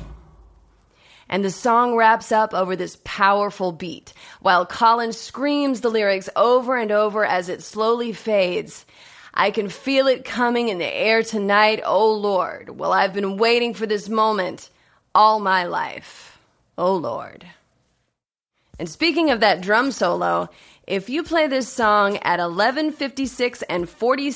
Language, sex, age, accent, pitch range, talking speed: English, female, 30-49, American, 195-255 Hz, 145 wpm